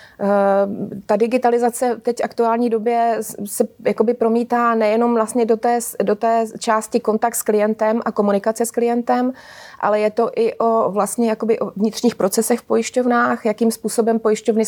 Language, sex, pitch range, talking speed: Czech, female, 210-230 Hz, 145 wpm